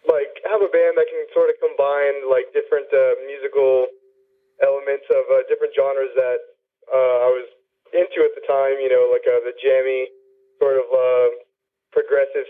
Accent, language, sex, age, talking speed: American, English, male, 20-39, 175 wpm